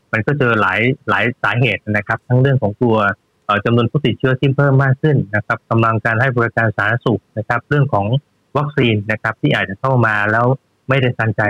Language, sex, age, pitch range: Thai, male, 20-39, 110-135 Hz